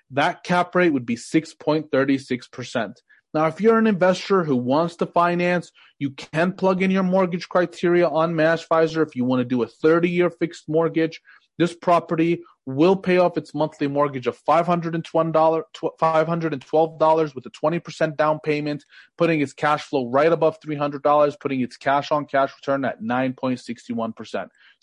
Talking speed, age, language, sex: 155 wpm, 30-49, English, male